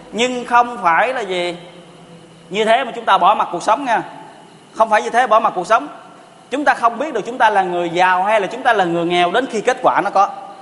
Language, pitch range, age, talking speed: Vietnamese, 175-220 Hz, 20-39, 260 wpm